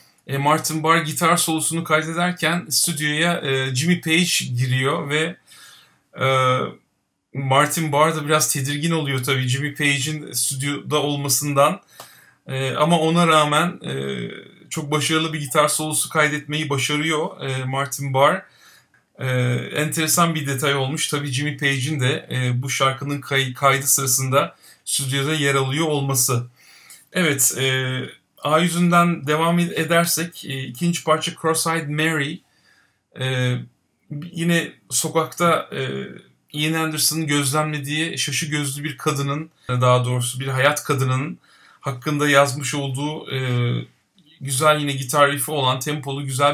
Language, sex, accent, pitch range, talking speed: Turkish, male, native, 135-155 Hz, 110 wpm